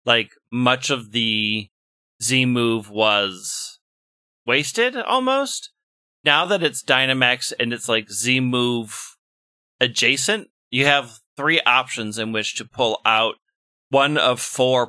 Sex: male